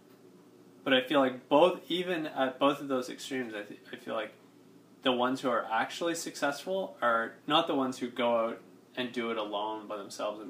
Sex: male